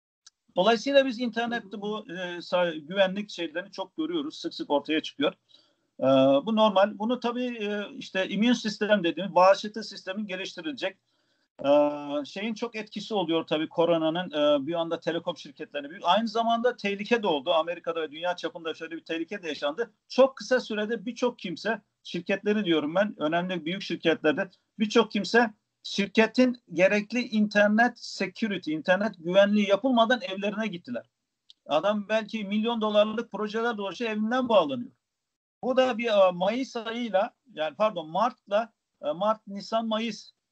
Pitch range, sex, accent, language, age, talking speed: 180-245 Hz, male, native, Turkish, 50-69, 140 wpm